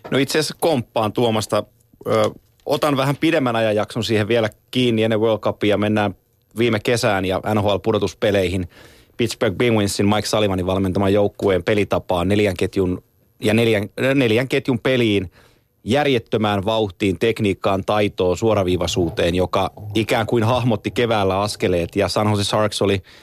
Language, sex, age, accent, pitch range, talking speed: Finnish, male, 30-49, native, 95-115 Hz, 135 wpm